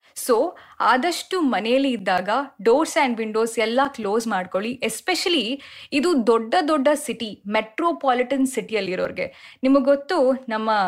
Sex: female